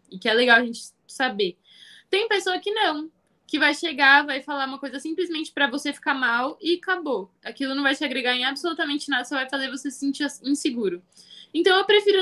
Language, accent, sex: Portuguese, Brazilian, female